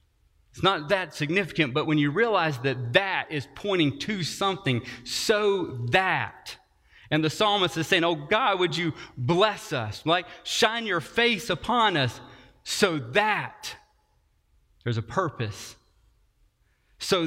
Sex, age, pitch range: male, 30-49, 125-185 Hz